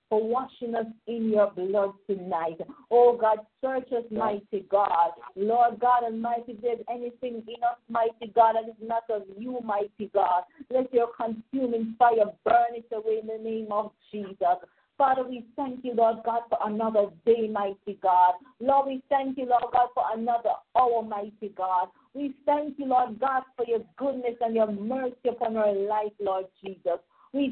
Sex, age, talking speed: female, 50-69, 175 wpm